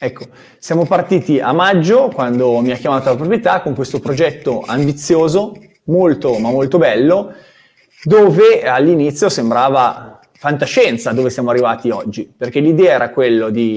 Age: 20-39